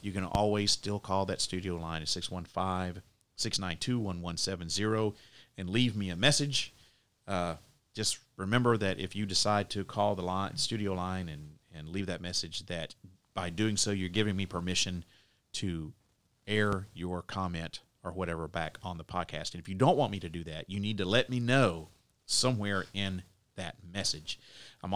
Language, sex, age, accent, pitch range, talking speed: English, male, 40-59, American, 95-120 Hz, 170 wpm